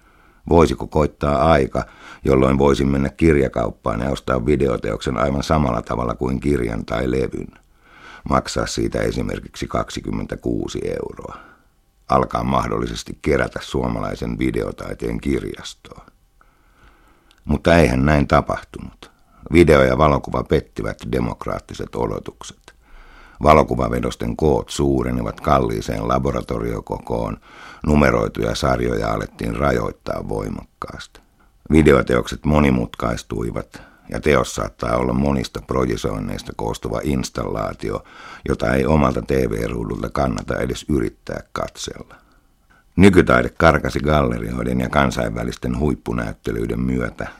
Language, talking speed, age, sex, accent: Finnish, 90 wpm, 60-79, male, native